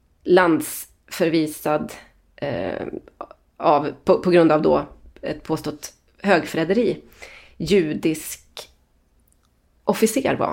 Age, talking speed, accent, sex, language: 30-49, 80 wpm, native, female, Swedish